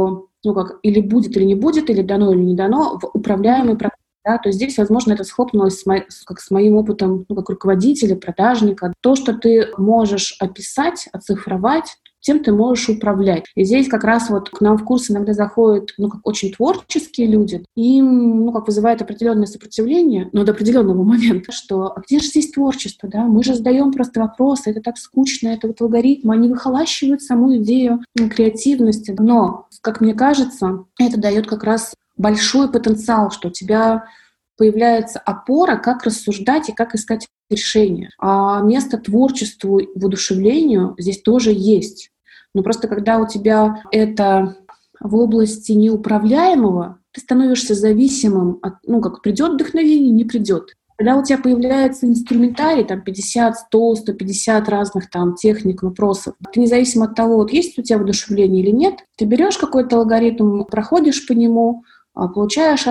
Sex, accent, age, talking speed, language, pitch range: female, native, 20-39, 165 wpm, Russian, 205-245 Hz